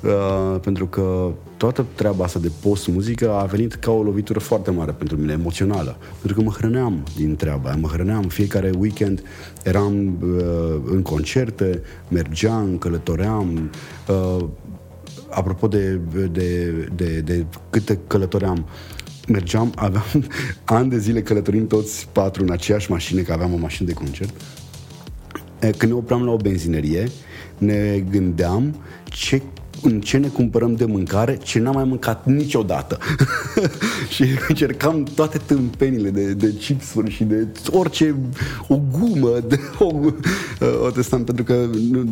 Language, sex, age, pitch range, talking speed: Romanian, male, 30-49, 90-120 Hz, 140 wpm